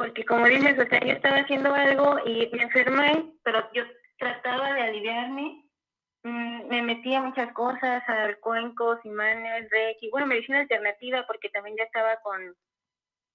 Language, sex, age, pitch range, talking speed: Spanish, female, 20-39, 225-265 Hz, 155 wpm